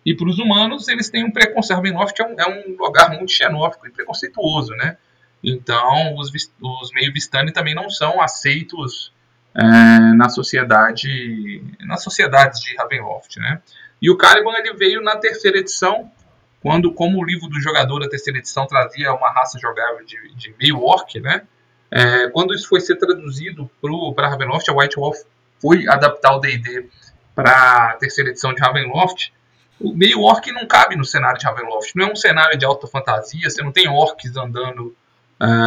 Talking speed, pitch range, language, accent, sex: 165 wpm, 125-185 Hz, Portuguese, Brazilian, male